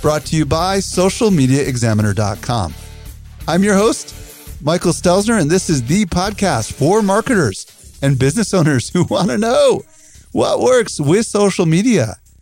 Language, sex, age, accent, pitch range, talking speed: English, male, 50-69, American, 115-160 Hz, 140 wpm